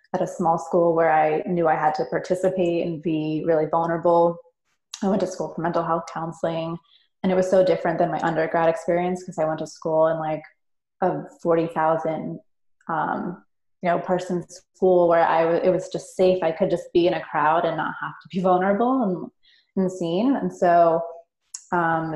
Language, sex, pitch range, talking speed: English, female, 165-185 Hz, 195 wpm